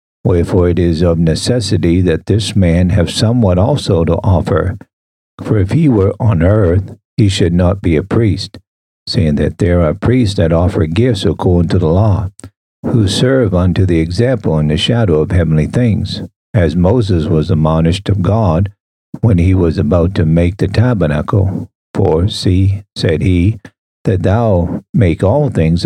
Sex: male